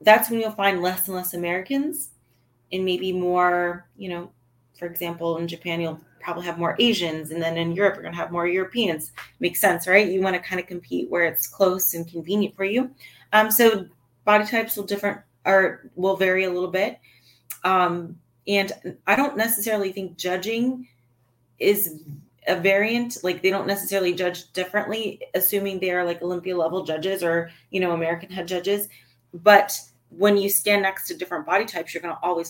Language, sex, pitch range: English, female, 170-200 Hz